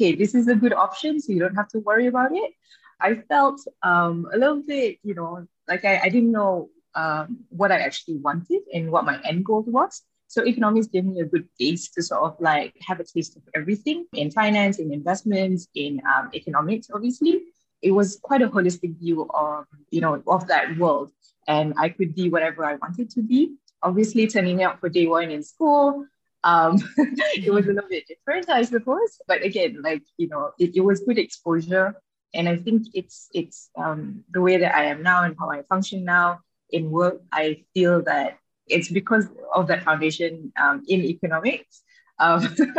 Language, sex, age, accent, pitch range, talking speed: English, female, 20-39, Malaysian, 165-225 Hz, 200 wpm